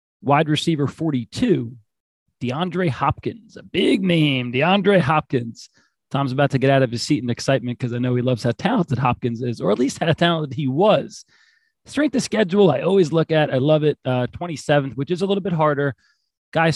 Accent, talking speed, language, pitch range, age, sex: American, 195 wpm, English, 125-160 Hz, 30-49, male